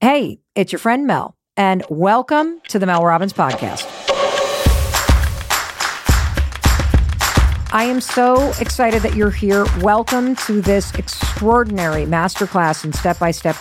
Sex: female